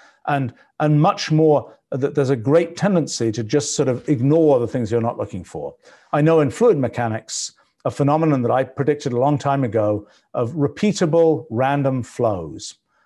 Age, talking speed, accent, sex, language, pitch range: 50-69, 175 wpm, British, male, English, 130-165 Hz